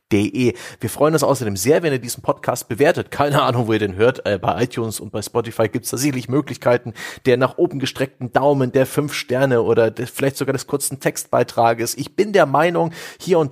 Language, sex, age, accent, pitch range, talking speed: German, male, 30-49, German, 110-135 Hz, 200 wpm